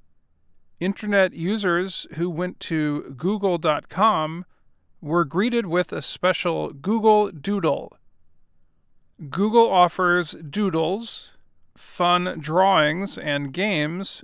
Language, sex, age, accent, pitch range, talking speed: English, male, 40-59, American, 140-200 Hz, 85 wpm